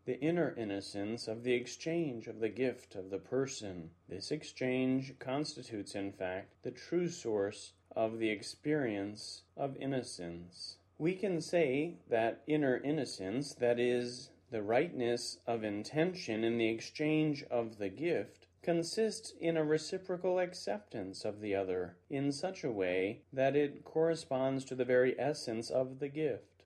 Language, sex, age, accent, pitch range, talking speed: English, male, 30-49, American, 110-160 Hz, 145 wpm